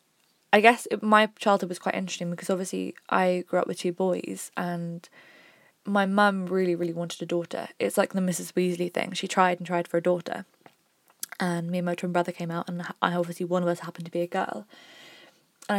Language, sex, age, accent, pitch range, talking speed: English, female, 20-39, British, 175-200 Hz, 215 wpm